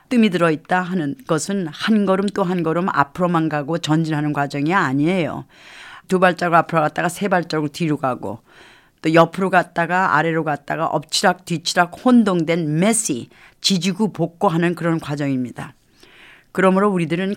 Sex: female